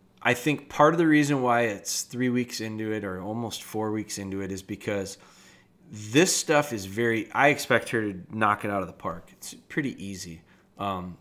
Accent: American